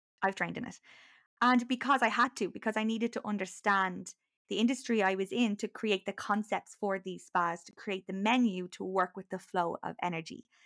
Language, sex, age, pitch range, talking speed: English, female, 20-39, 185-225 Hz, 210 wpm